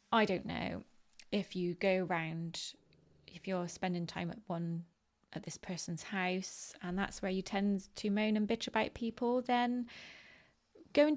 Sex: female